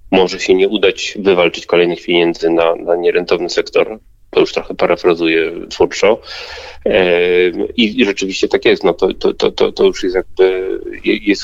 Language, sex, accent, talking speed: Polish, male, native, 155 wpm